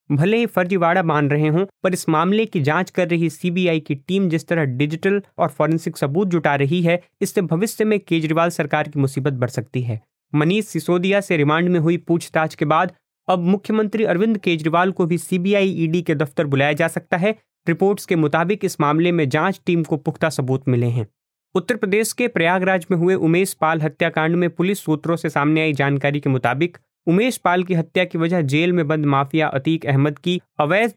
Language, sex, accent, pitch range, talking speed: Hindi, male, native, 155-190 Hz, 170 wpm